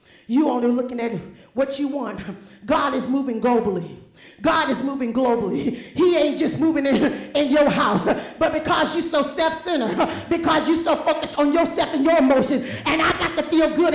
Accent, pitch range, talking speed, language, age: American, 235-340 Hz, 185 wpm, English, 40-59